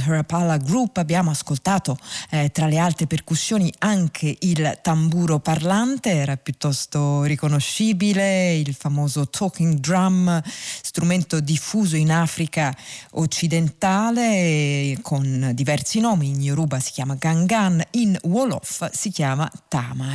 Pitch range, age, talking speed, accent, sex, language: 145-185 Hz, 40-59, 115 wpm, native, female, Italian